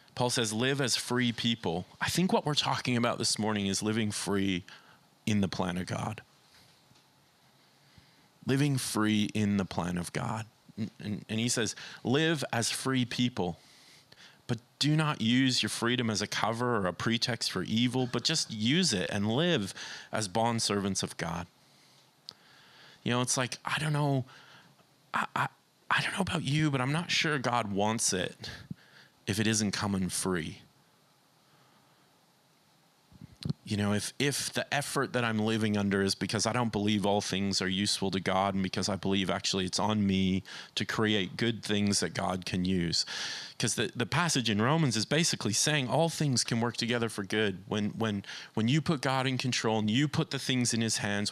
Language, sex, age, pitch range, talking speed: English, male, 30-49, 105-135 Hz, 185 wpm